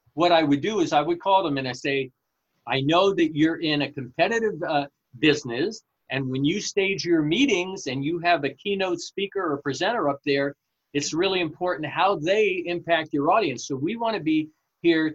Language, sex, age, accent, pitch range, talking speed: English, male, 50-69, American, 140-175 Hz, 200 wpm